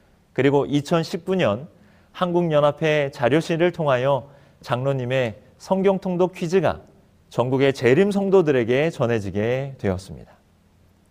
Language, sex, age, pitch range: Korean, male, 30-49, 115-175 Hz